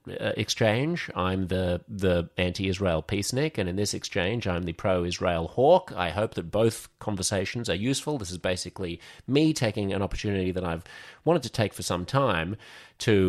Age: 30-49